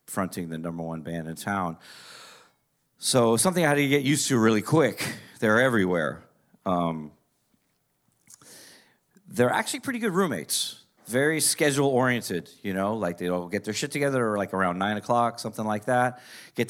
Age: 40-59